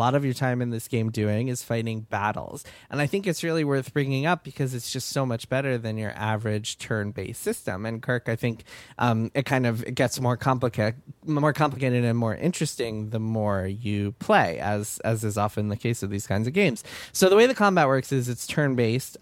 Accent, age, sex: American, 20-39, male